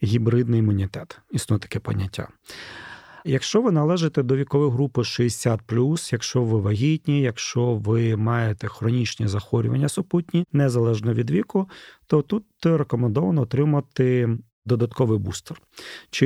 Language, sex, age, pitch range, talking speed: Ukrainian, male, 40-59, 110-140 Hz, 115 wpm